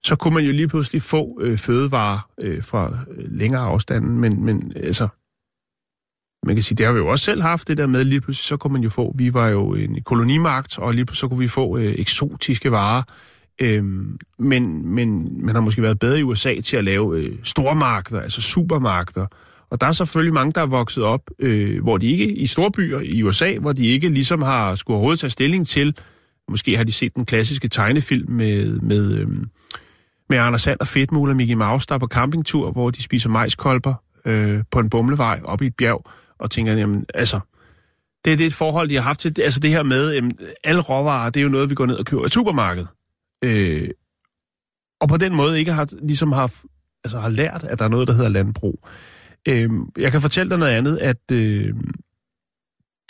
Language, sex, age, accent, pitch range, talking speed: Danish, male, 30-49, native, 110-145 Hz, 210 wpm